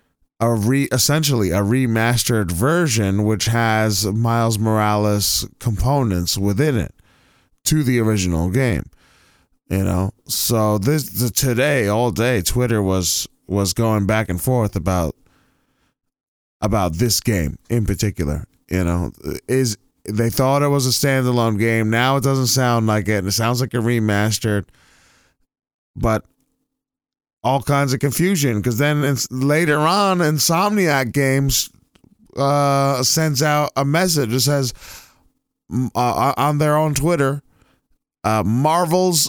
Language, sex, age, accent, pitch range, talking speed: English, male, 20-39, American, 110-140 Hz, 130 wpm